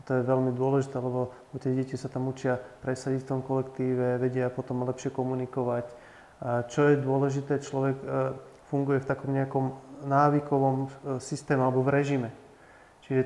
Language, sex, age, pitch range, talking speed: Slovak, male, 30-49, 125-140 Hz, 145 wpm